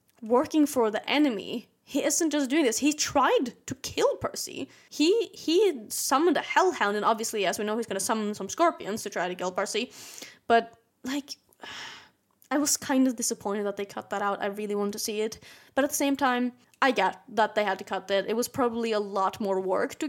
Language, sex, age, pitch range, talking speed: English, female, 20-39, 215-280 Hz, 220 wpm